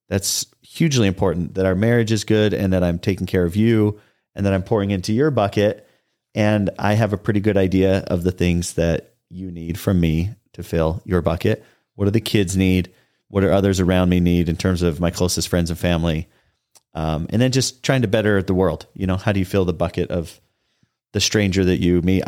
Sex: male